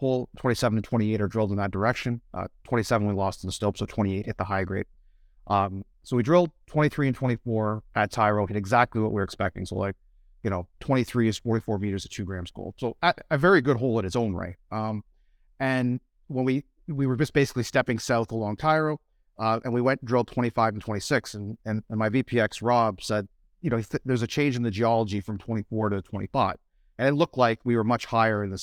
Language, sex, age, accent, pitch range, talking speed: English, male, 30-49, American, 105-130 Hz, 230 wpm